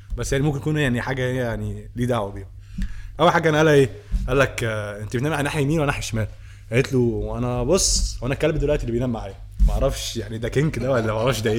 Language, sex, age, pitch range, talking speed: Arabic, male, 20-39, 105-150 Hz, 235 wpm